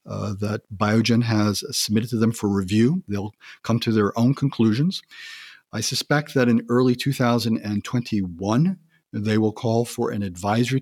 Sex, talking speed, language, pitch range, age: male, 150 wpm, English, 105-125 Hz, 50-69